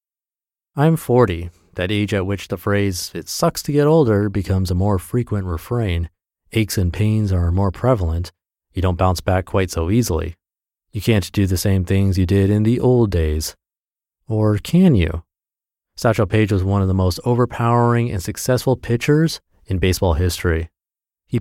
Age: 30-49